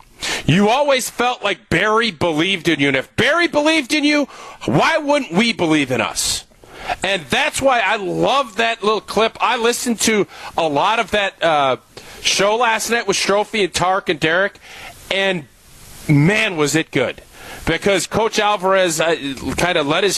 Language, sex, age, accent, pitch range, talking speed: English, male, 40-59, American, 170-220 Hz, 170 wpm